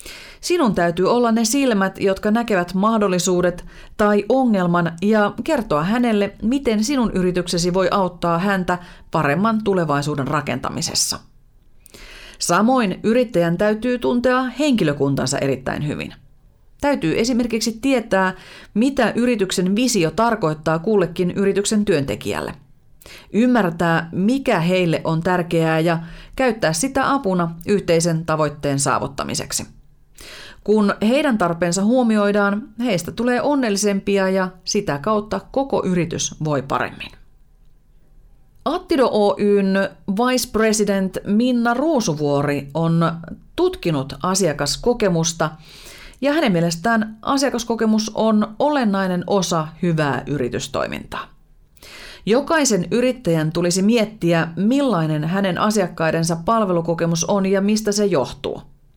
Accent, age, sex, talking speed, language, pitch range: native, 30-49, female, 100 wpm, Finnish, 170-230 Hz